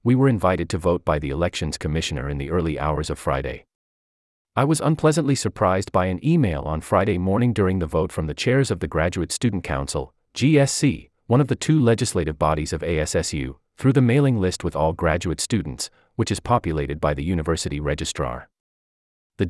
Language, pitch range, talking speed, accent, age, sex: English, 80-120 Hz, 190 wpm, American, 30-49, male